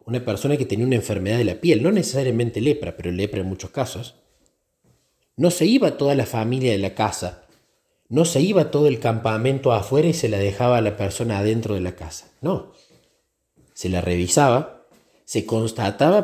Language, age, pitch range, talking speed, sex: Spanish, 40-59, 95-135 Hz, 190 wpm, male